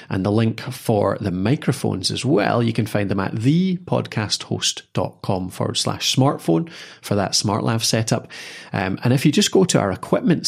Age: 30-49